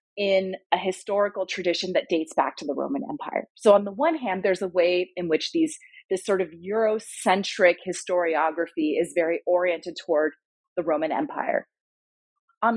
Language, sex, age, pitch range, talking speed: English, female, 30-49, 170-240 Hz, 165 wpm